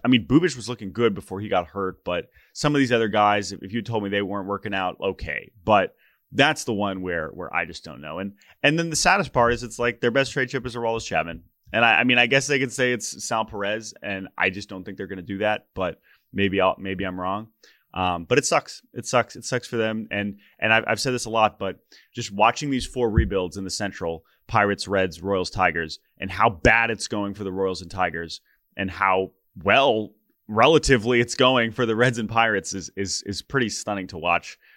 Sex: male